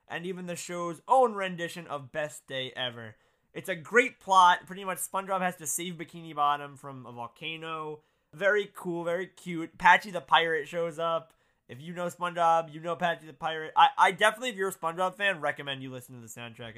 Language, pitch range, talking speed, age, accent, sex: English, 130-205 Hz, 205 wpm, 20-39, American, male